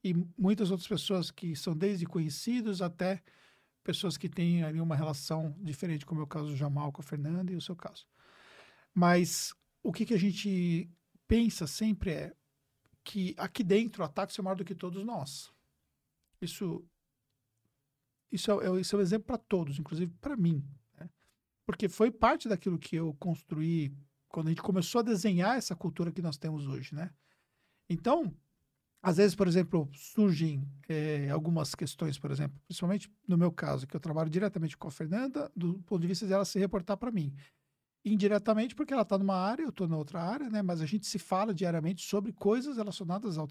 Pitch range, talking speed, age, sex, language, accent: 160-210 Hz, 190 wpm, 50-69, male, Portuguese, Brazilian